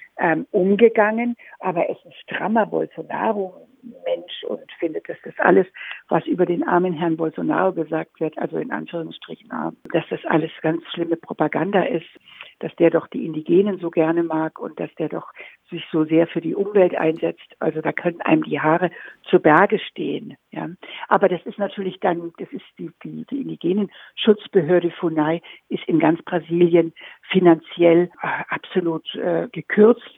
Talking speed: 160 wpm